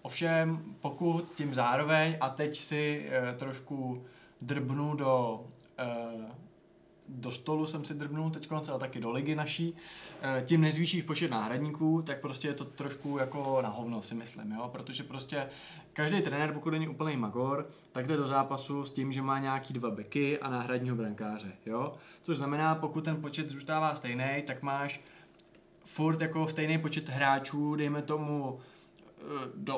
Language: Czech